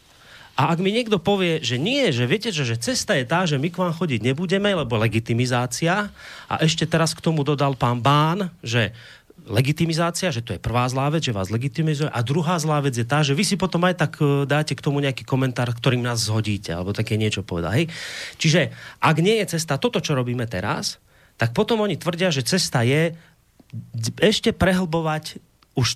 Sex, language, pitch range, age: male, Slovak, 120-165 Hz, 30-49